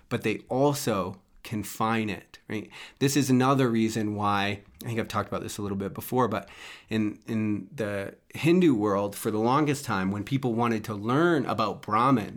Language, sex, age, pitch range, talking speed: English, male, 30-49, 105-130 Hz, 180 wpm